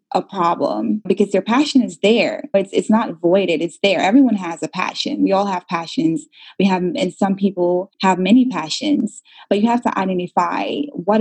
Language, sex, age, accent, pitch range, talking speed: English, female, 20-39, American, 170-220 Hz, 195 wpm